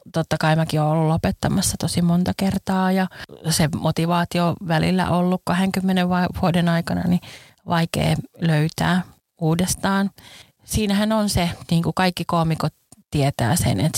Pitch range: 150-175 Hz